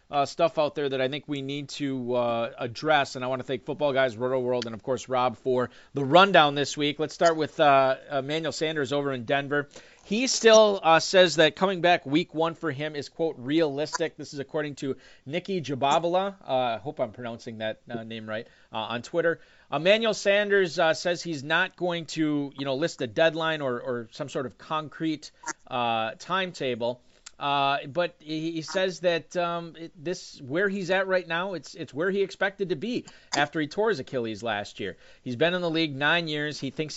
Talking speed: 205 wpm